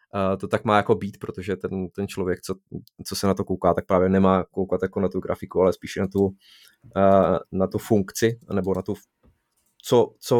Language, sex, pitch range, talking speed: Czech, male, 90-105 Hz, 210 wpm